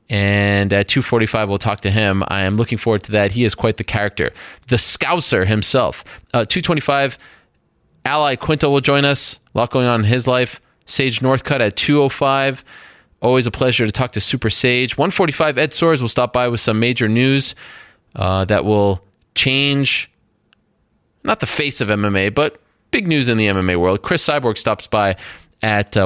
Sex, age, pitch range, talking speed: male, 20-39, 110-145 Hz, 180 wpm